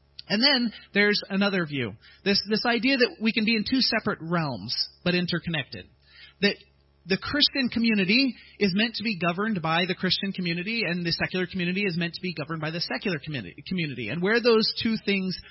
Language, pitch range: English, 150-210 Hz